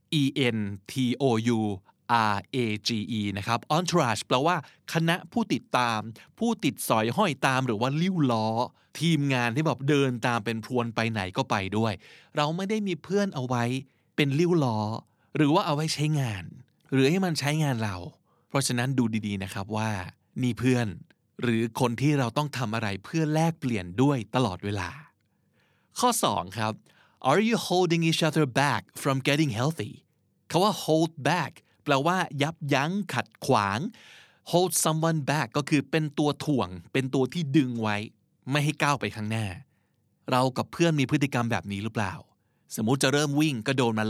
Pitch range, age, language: 115-165 Hz, 20-39, Thai